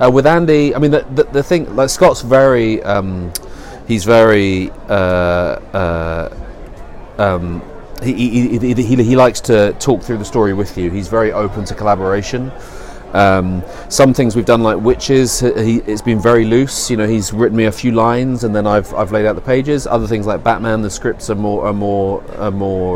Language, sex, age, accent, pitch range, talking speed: French, male, 30-49, British, 95-120 Hz, 205 wpm